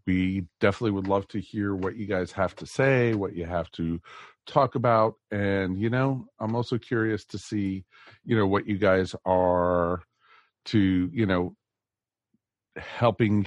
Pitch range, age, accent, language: 90-110 Hz, 40-59, American, English